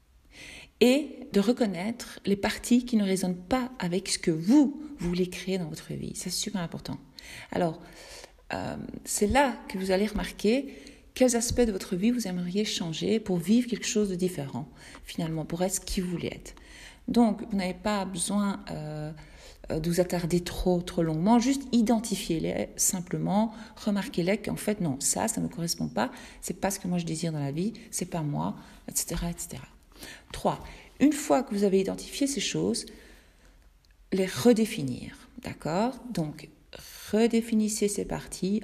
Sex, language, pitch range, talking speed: female, French, 175-230 Hz, 170 wpm